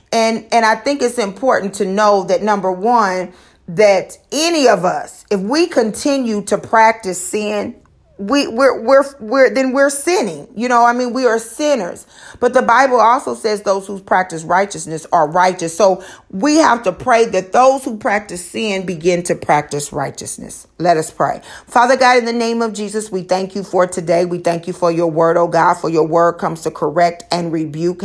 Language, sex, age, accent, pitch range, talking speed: English, female, 40-59, American, 180-235 Hz, 195 wpm